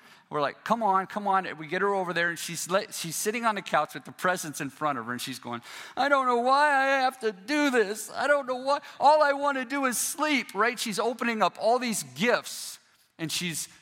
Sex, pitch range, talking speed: male, 165-220 Hz, 250 wpm